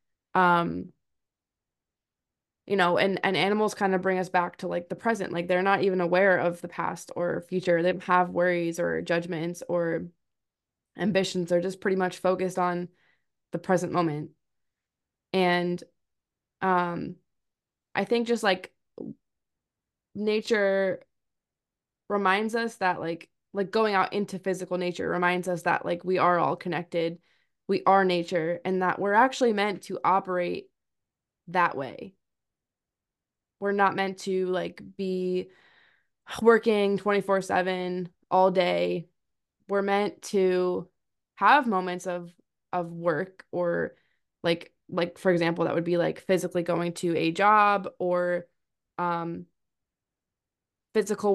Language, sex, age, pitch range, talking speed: English, female, 20-39, 175-195 Hz, 135 wpm